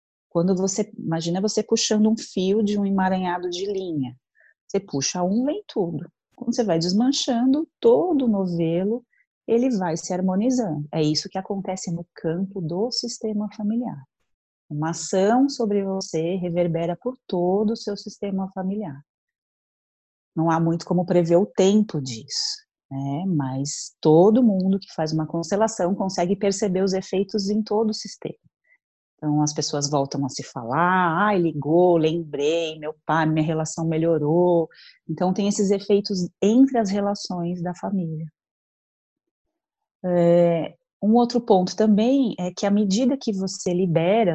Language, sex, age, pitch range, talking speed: Portuguese, female, 30-49, 160-215 Hz, 145 wpm